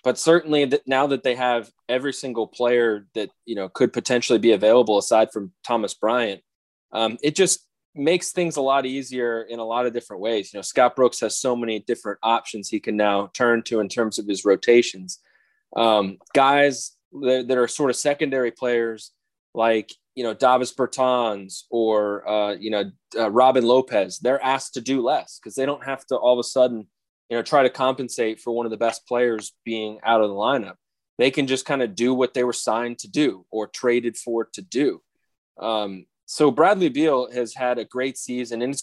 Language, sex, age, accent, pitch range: Japanese, male, 20-39, American, 115-135 Hz